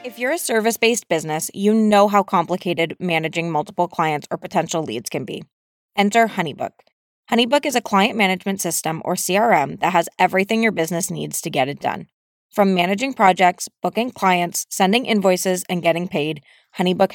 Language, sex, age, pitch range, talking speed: English, female, 20-39, 175-215 Hz, 170 wpm